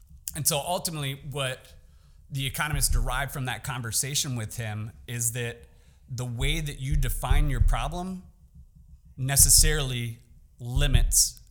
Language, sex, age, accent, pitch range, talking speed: English, male, 30-49, American, 115-145 Hz, 120 wpm